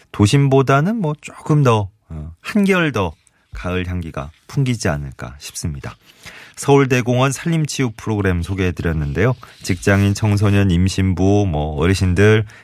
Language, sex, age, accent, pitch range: Korean, male, 30-49, native, 85-130 Hz